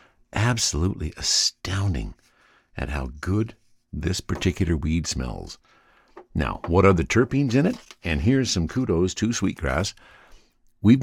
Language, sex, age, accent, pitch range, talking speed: English, male, 60-79, American, 80-115 Hz, 125 wpm